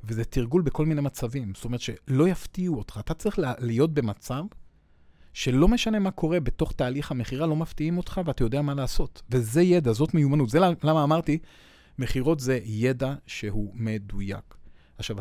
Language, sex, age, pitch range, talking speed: Hebrew, male, 40-59, 110-155 Hz, 160 wpm